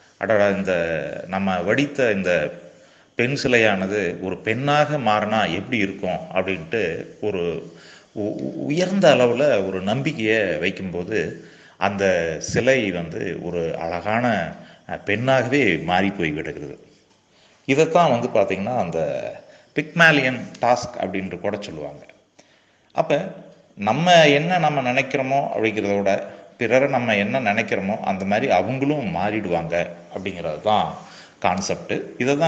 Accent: native